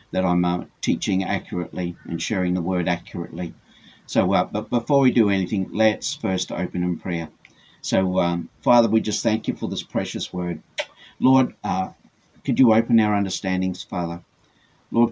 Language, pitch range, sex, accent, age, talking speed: English, 90-120 Hz, male, Australian, 50-69, 165 wpm